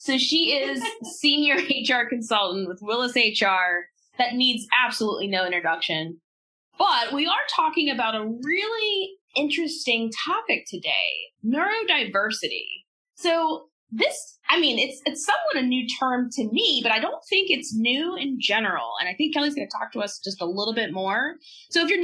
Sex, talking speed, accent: female, 170 wpm, American